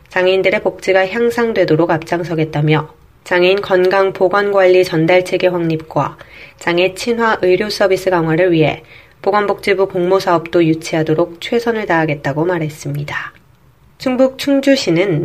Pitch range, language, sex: 165-200 Hz, Korean, female